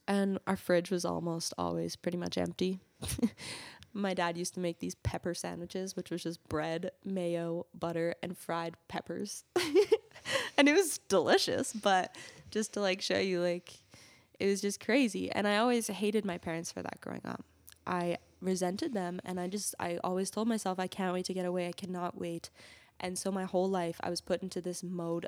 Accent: American